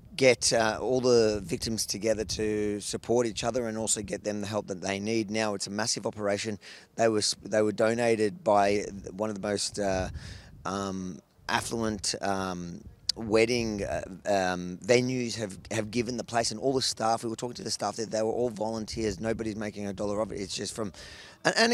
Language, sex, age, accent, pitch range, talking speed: English, male, 20-39, Australian, 100-115 Hz, 200 wpm